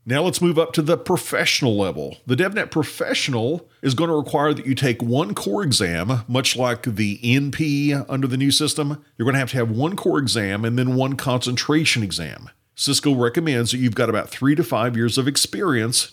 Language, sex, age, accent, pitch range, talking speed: English, male, 50-69, American, 120-145 Hz, 205 wpm